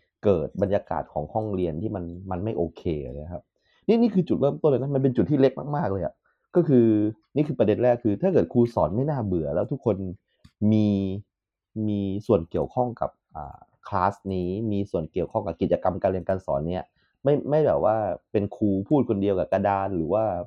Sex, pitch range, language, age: male, 95-120 Hz, Thai, 30-49